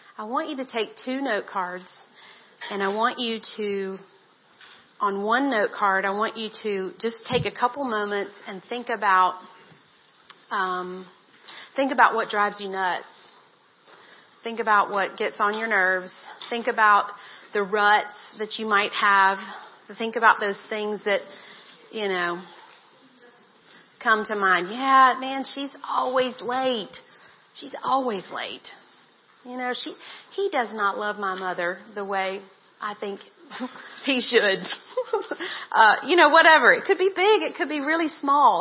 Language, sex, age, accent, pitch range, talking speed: English, female, 40-59, American, 200-260 Hz, 150 wpm